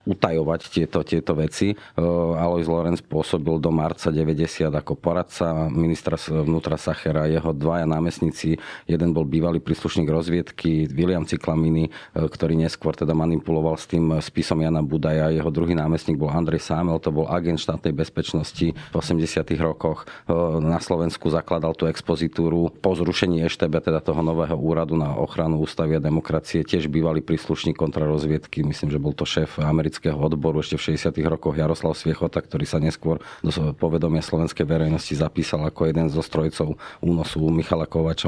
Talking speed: 150 wpm